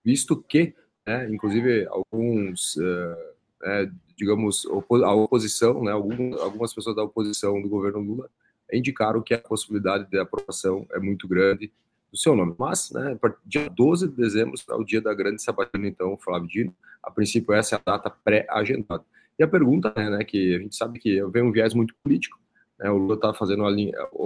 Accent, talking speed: Brazilian, 190 wpm